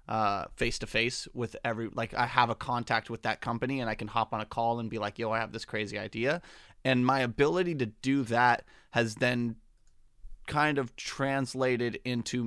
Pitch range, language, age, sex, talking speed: 110-125 Hz, English, 30-49, male, 195 wpm